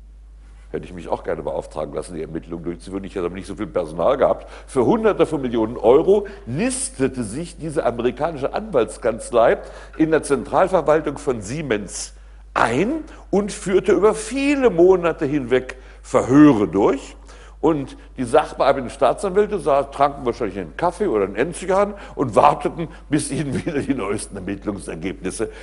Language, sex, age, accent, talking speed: German, male, 60-79, German, 145 wpm